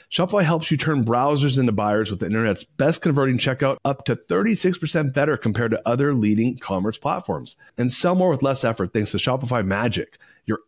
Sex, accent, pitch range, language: male, American, 105-150 Hz, English